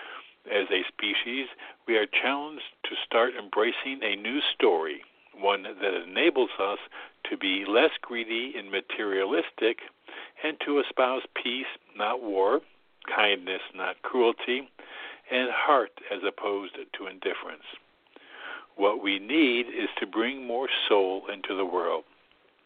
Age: 60-79